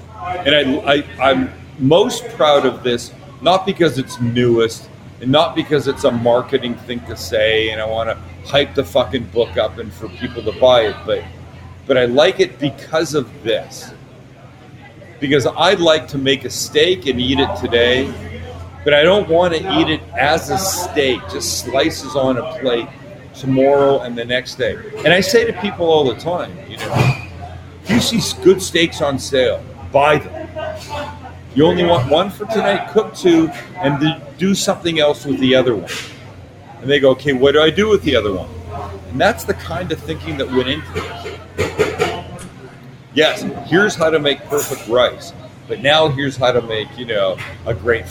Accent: American